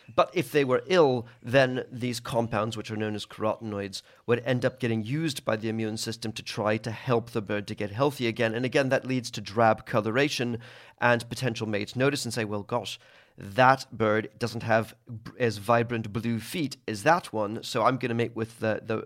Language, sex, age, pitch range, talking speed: English, male, 40-59, 110-145 Hz, 210 wpm